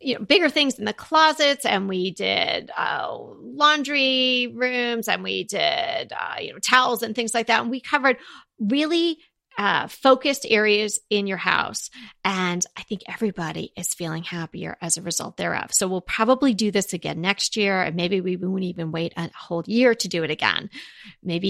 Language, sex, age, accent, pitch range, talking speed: English, female, 30-49, American, 190-245 Hz, 185 wpm